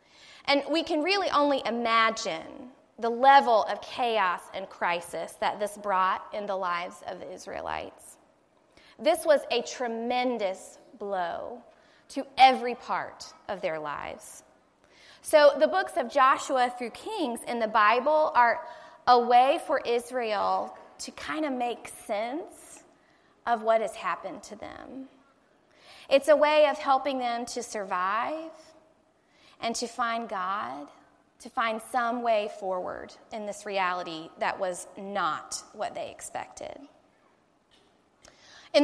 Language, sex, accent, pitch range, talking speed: English, female, American, 230-305 Hz, 130 wpm